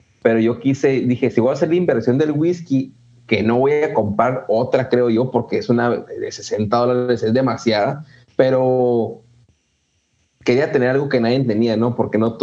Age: 30-49